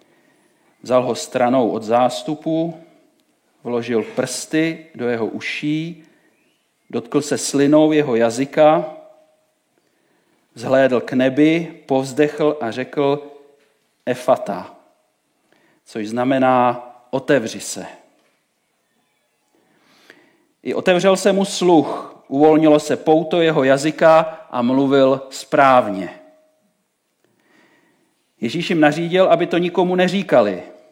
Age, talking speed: 40-59, 90 wpm